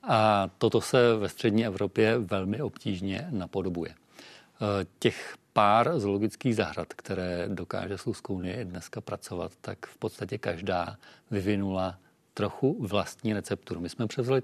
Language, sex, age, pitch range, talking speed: Czech, male, 40-59, 100-115 Hz, 120 wpm